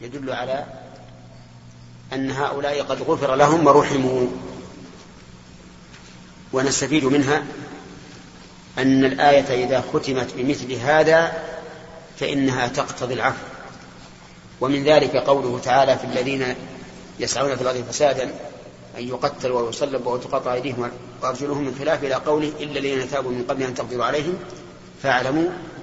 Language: Arabic